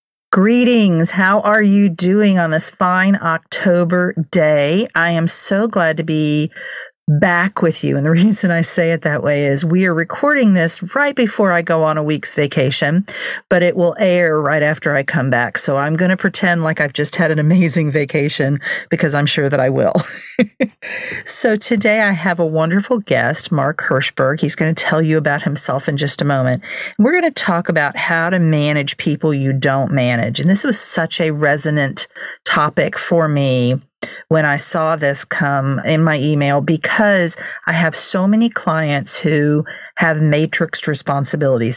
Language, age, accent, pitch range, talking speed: English, 50-69, American, 150-180 Hz, 180 wpm